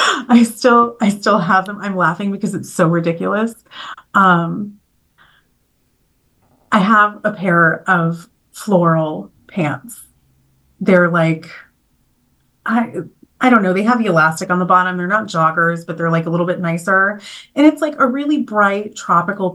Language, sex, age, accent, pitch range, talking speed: English, female, 30-49, American, 180-235 Hz, 155 wpm